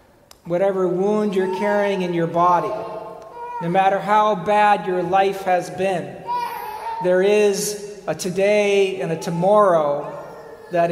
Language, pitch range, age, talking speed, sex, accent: English, 165-195 Hz, 50-69, 125 wpm, male, American